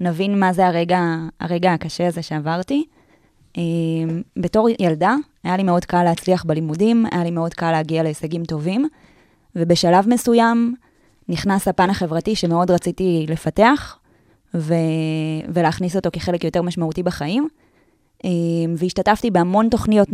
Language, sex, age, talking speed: Hebrew, female, 20-39, 130 wpm